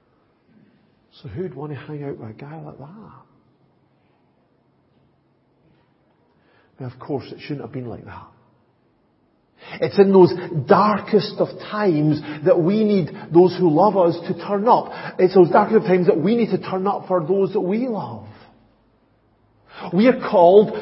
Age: 50-69